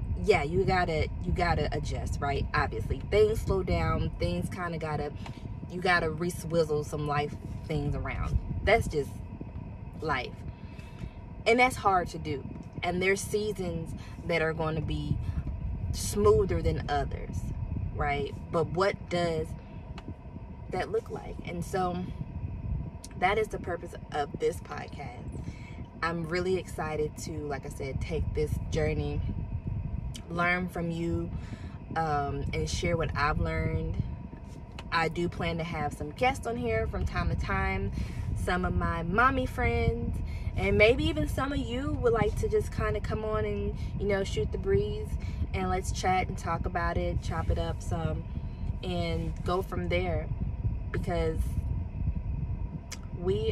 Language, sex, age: English, female, 20-39